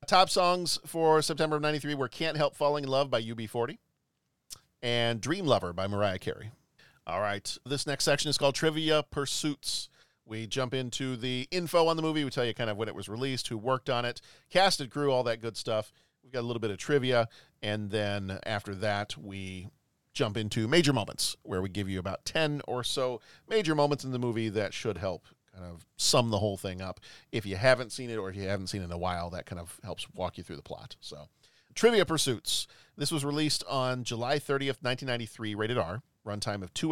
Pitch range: 105-145 Hz